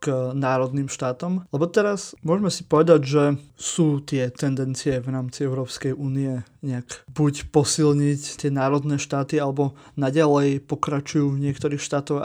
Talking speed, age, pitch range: 135 wpm, 20-39, 130-145 Hz